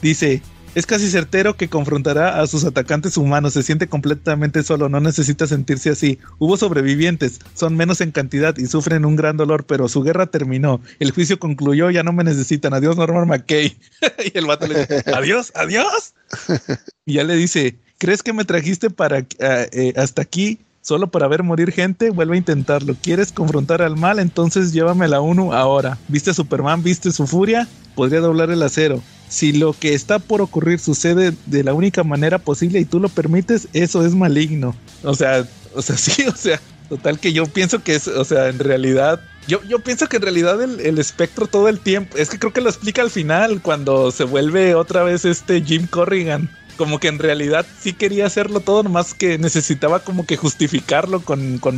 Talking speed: 195 wpm